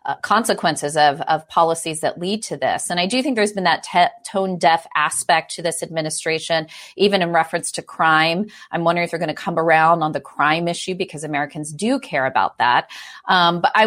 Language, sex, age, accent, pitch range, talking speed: English, female, 30-49, American, 155-185 Hz, 205 wpm